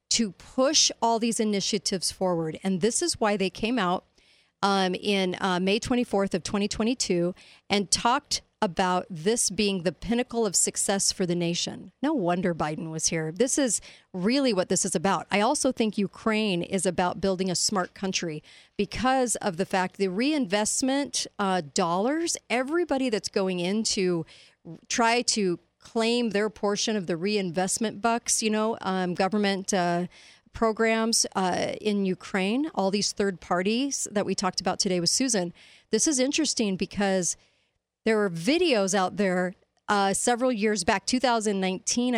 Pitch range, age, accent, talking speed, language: 185-235 Hz, 40-59, American, 155 wpm, English